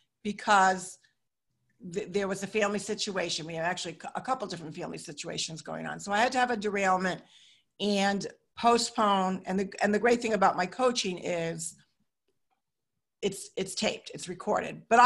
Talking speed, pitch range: 170 wpm, 185-215 Hz